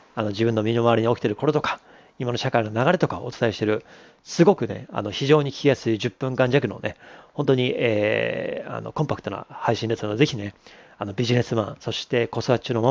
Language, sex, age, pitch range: Japanese, male, 40-59, 115-145 Hz